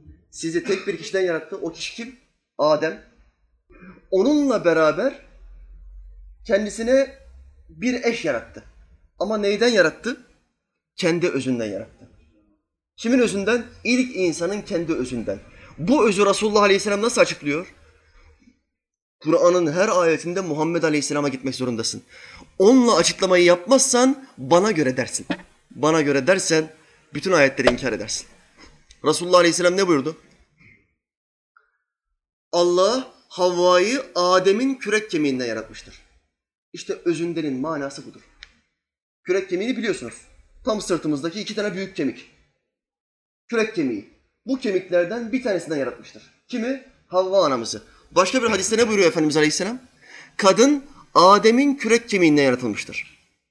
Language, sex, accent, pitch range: Turkish, male, native, 145-230 Hz